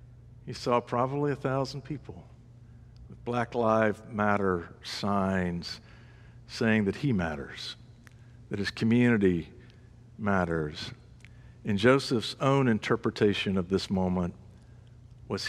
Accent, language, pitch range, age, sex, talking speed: American, English, 105-120 Hz, 60-79, male, 105 wpm